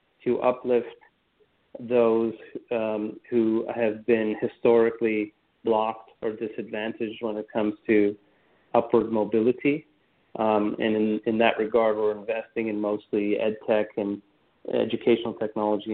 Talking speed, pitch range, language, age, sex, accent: 120 wpm, 105-120 Hz, English, 40-59, male, American